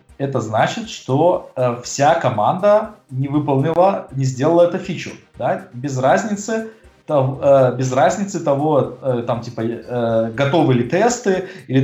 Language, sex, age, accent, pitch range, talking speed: Russian, male, 20-39, native, 130-165 Hz, 140 wpm